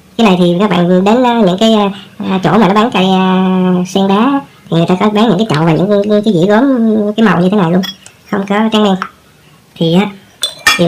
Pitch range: 175-205 Hz